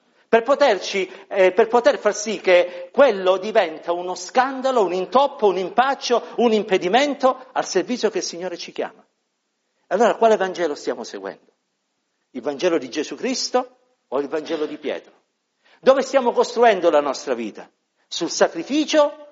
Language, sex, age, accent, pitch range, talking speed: Italian, male, 50-69, native, 175-250 Hz, 150 wpm